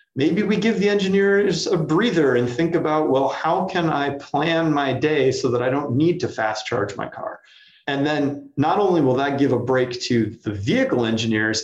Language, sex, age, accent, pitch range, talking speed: English, male, 40-59, American, 115-160 Hz, 205 wpm